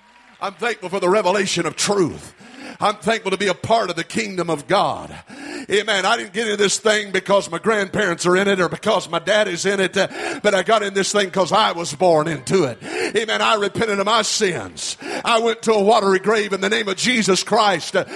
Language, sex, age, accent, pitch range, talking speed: English, male, 50-69, American, 170-230 Hz, 225 wpm